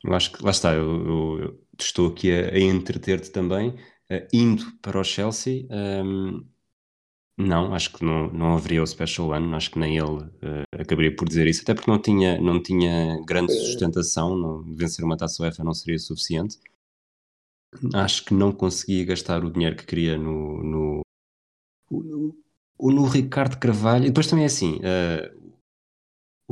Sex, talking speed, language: male, 170 wpm, Portuguese